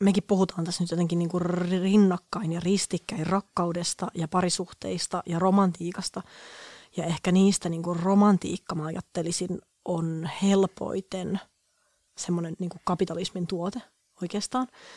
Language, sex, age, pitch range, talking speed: Finnish, female, 30-49, 170-195 Hz, 110 wpm